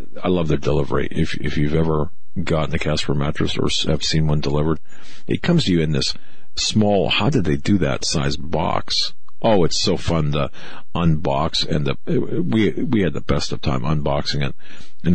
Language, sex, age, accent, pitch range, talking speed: English, male, 50-69, American, 75-90 Hz, 195 wpm